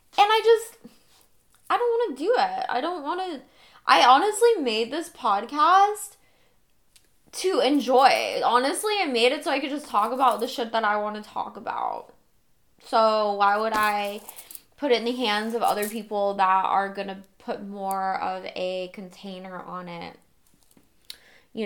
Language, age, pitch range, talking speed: English, 10-29, 210-285 Hz, 170 wpm